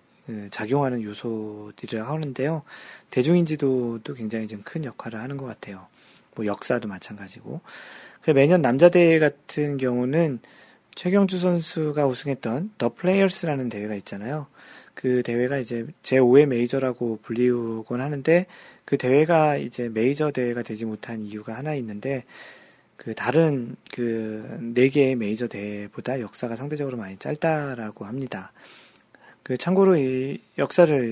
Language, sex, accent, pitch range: Korean, male, native, 115-160 Hz